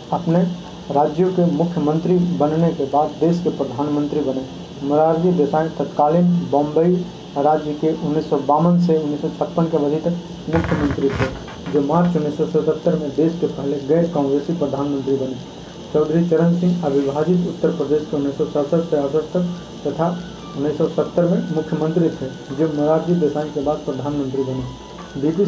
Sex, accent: male, native